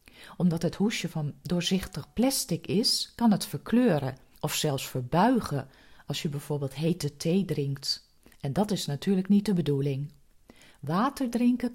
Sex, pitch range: female, 145-195 Hz